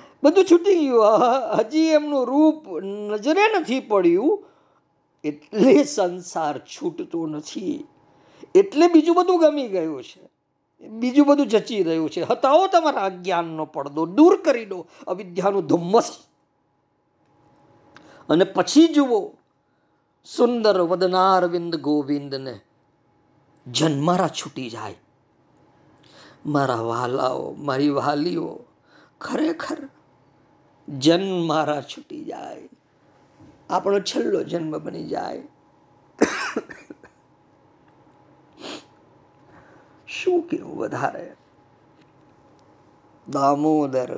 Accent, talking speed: native, 45 wpm